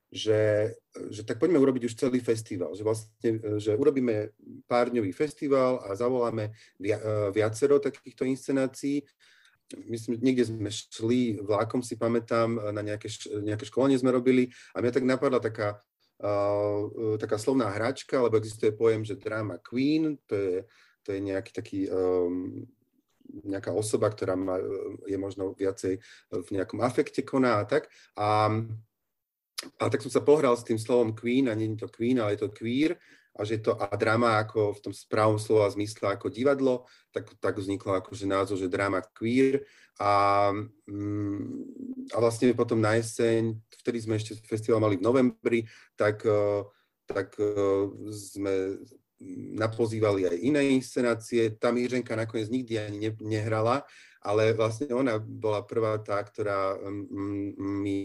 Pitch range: 105-125 Hz